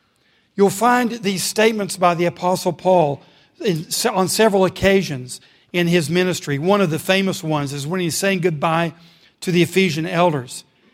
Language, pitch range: English, 175-210 Hz